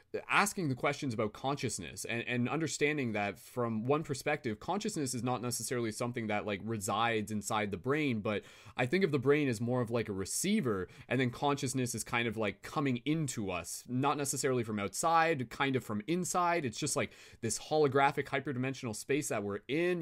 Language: English